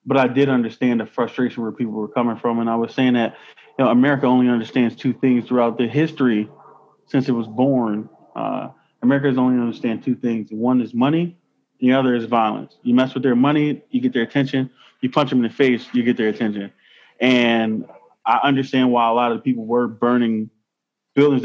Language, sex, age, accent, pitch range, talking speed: English, male, 20-39, American, 120-145 Hz, 215 wpm